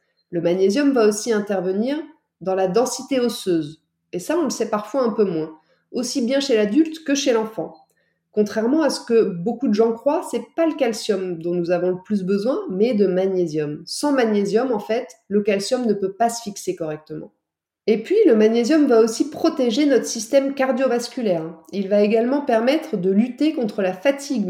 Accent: French